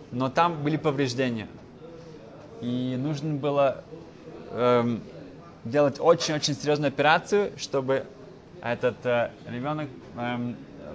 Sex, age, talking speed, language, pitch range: male, 20-39, 95 wpm, Russian, 125-150 Hz